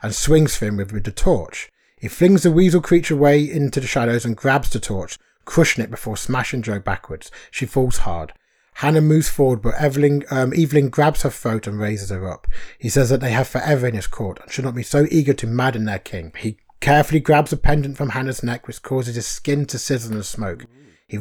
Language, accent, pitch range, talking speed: English, British, 115-145 Hz, 230 wpm